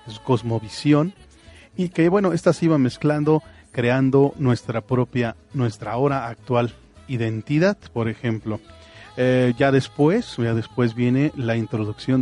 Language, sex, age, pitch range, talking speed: Spanish, male, 40-59, 115-145 Hz, 125 wpm